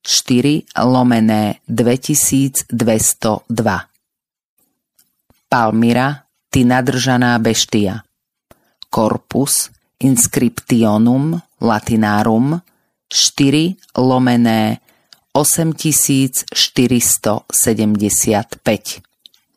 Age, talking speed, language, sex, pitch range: 30-49, 40 wpm, Slovak, female, 115-145 Hz